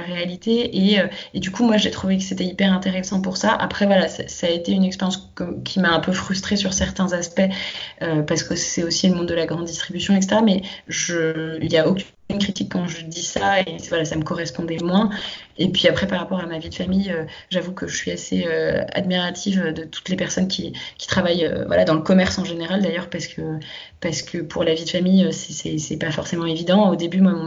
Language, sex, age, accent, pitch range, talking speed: French, female, 20-39, French, 160-185 Hz, 240 wpm